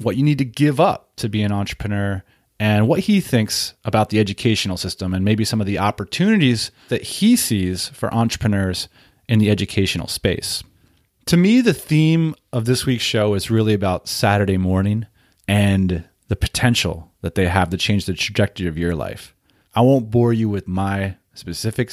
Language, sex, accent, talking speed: English, male, American, 180 wpm